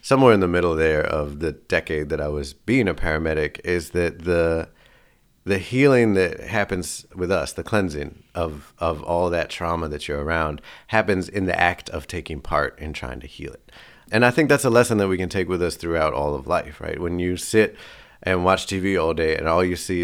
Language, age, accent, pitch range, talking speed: English, 30-49, American, 80-110 Hz, 220 wpm